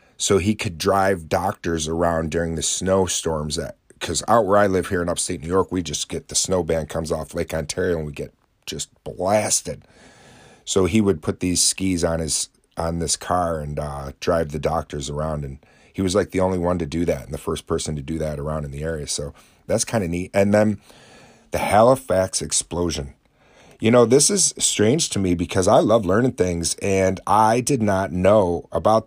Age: 30-49